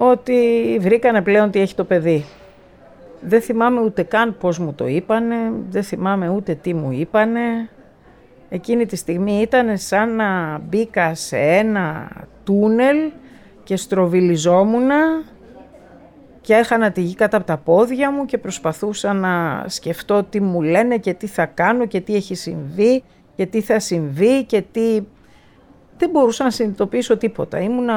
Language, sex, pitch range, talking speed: Greek, female, 180-230 Hz, 150 wpm